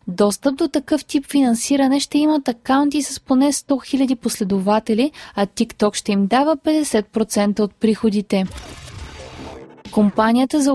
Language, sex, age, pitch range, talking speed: Bulgarian, female, 20-39, 210-275 Hz, 130 wpm